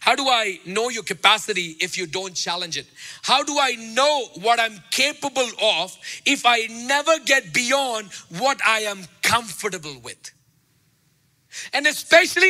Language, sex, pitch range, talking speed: English, male, 165-280 Hz, 150 wpm